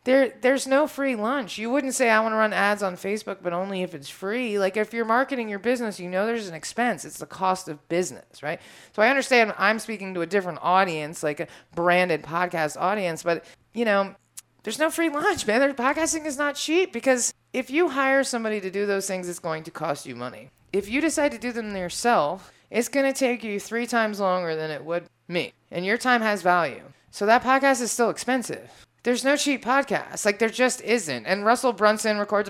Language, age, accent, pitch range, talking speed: English, 30-49, American, 175-240 Hz, 225 wpm